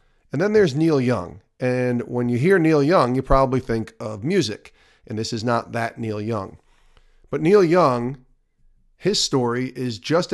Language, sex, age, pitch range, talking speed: English, male, 40-59, 110-150 Hz, 175 wpm